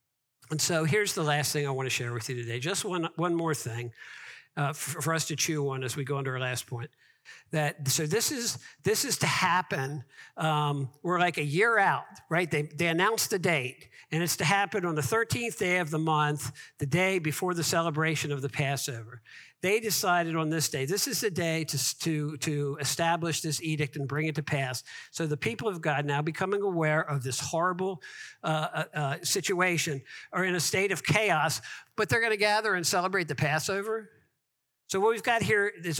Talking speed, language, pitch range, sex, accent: 210 wpm, English, 140-185 Hz, male, American